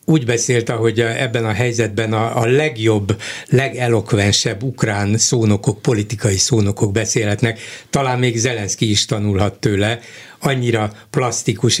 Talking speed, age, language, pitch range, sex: 115 wpm, 60-79, Hungarian, 115-145 Hz, male